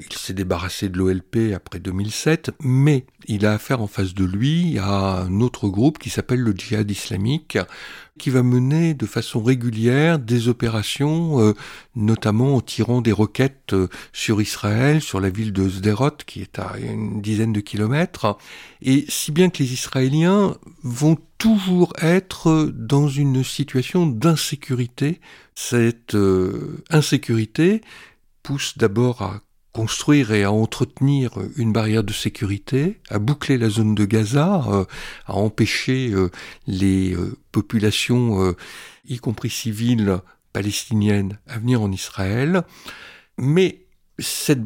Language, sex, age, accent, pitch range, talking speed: French, male, 60-79, French, 105-140 Hz, 130 wpm